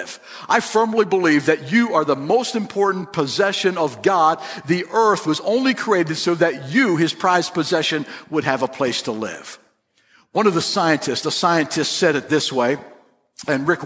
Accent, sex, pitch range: American, male, 150-195 Hz